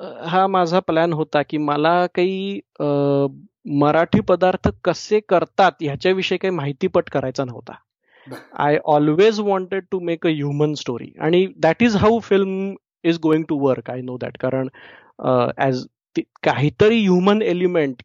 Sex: male